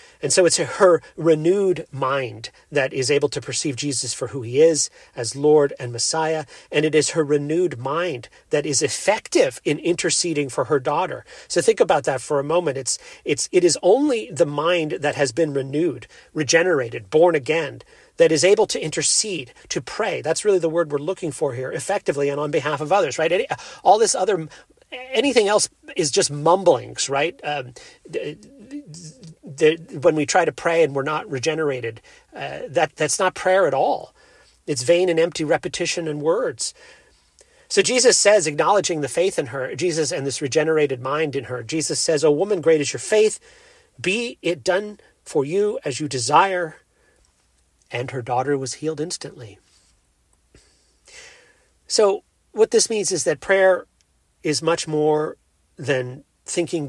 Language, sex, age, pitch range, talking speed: English, male, 40-59, 145-195 Hz, 175 wpm